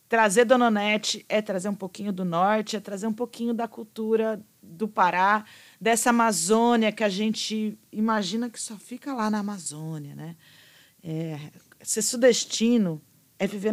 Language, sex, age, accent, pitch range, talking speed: Portuguese, female, 40-59, Brazilian, 180-230 Hz, 155 wpm